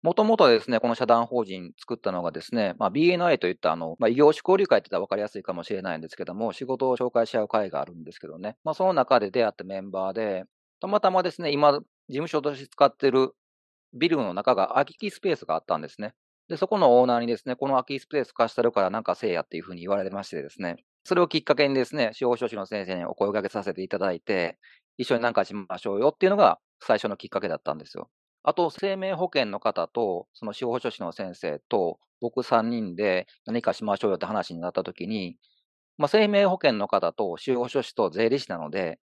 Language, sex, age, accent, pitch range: Japanese, male, 40-59, native, 115-175 Hz